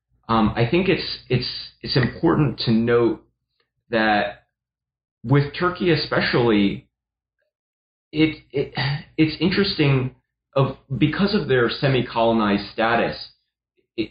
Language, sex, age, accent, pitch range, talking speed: English, male, 30-49, American, 105-130 Hz, 100 wpm